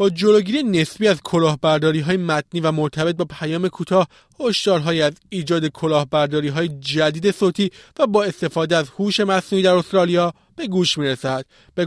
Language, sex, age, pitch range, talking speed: Persian, male, 30-49, 160-200 Hz, 155 wpm